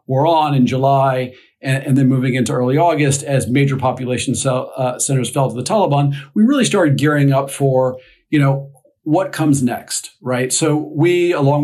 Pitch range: 130-150 Hz